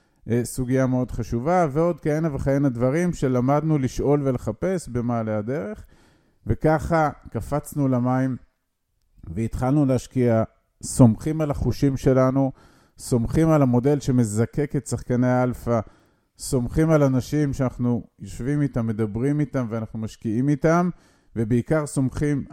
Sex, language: male, Hebrew